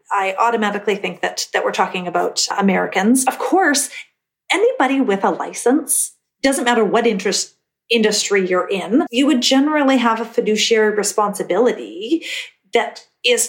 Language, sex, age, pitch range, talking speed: English, female, 40-59, 205-260 Hz, 140 wpm